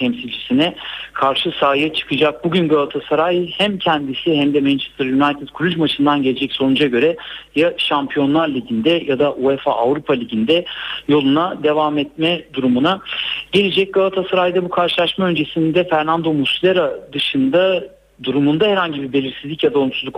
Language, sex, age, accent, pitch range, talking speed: Turkish, male, 60-79, native, 130-165 Hz, 130 wpm